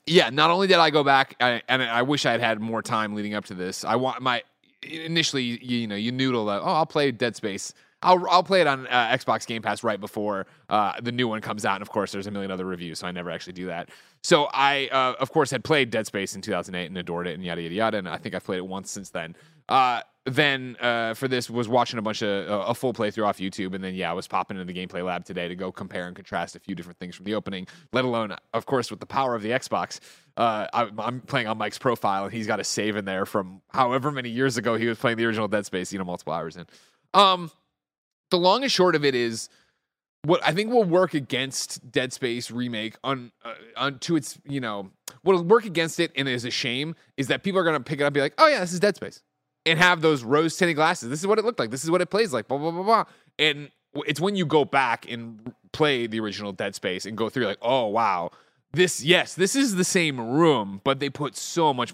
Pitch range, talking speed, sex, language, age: 105-155 Hz, 265 wpm, male, English, 30-49